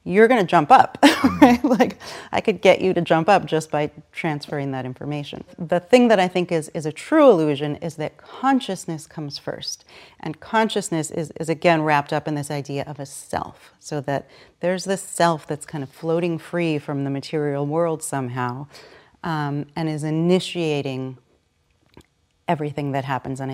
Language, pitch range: English, 145-170 Hz